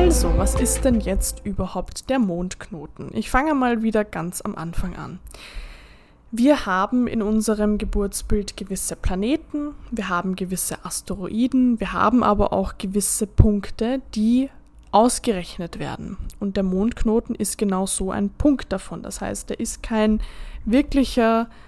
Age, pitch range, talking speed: 20-39, 190-235 Hz, 140 wpm